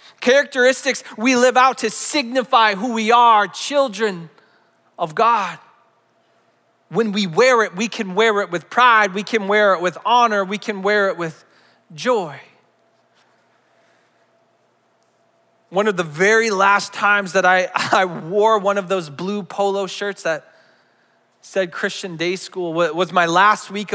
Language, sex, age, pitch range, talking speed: English, male, 30-49, 180-225 Hz, 150 wpm